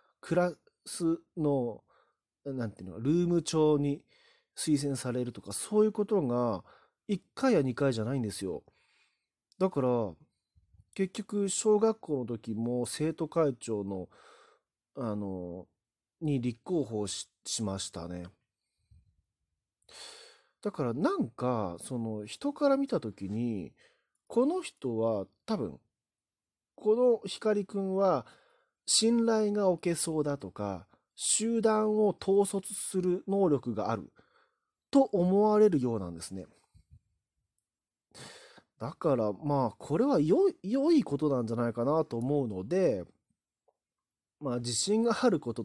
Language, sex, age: Japanese, male, 40-59